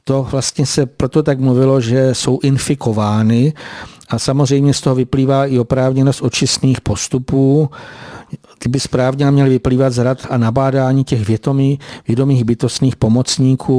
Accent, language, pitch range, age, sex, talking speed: native, Czech, 120-140 Hz, 50-69, male, 130 wpm